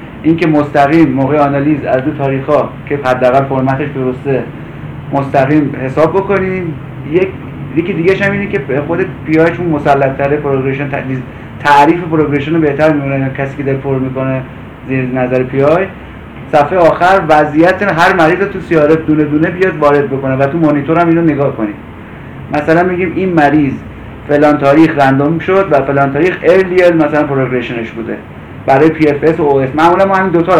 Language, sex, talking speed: Persian, male, 170 wpm